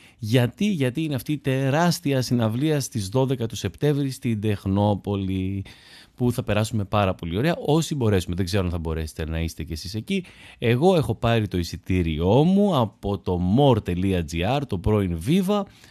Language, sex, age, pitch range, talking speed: Greek, male, 30-49, 100-145 Hz, 160 wpm